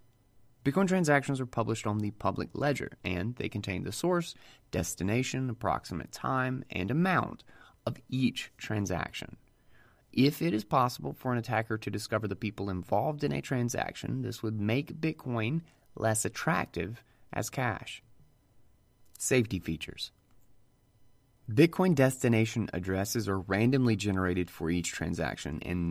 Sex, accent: male, American